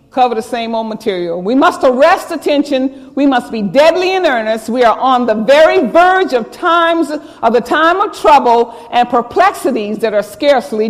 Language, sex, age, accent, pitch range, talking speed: English, female, 50-69, American, 250-350 Hz, 180 wpm